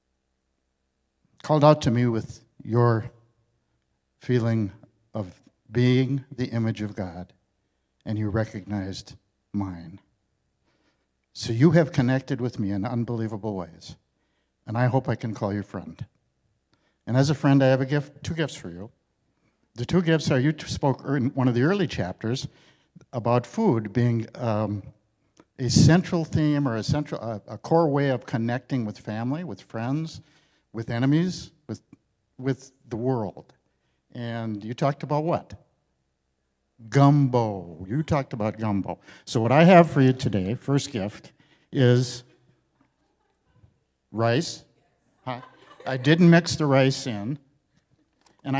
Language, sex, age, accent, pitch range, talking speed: English, male, 60-79, American, 110-145 Hz, 140 wpm